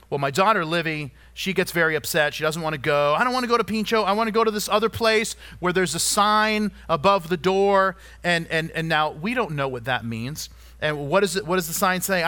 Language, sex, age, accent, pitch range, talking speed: English, male, 40-59, American, 145-205 Hz, 250 wpm